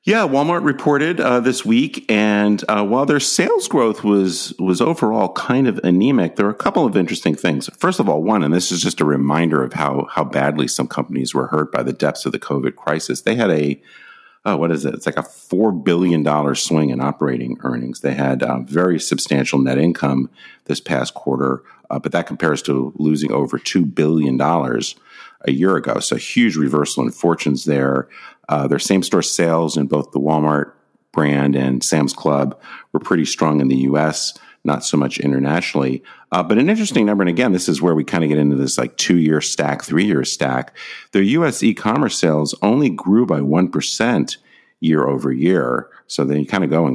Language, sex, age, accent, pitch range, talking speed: English, male, 50-69, American, 70-90 Hz, 200 wpm